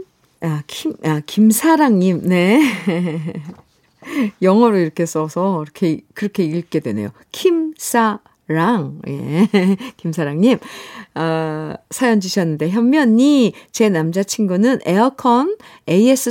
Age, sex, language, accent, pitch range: 50-69, female, Korean, native, 165-230 Hz